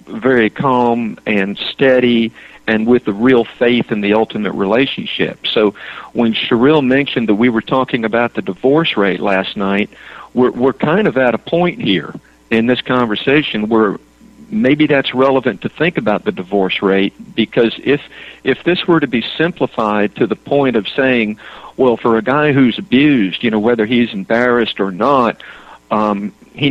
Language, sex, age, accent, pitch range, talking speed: English, male, 50-69, American, 105-130 Hz, 170 wpm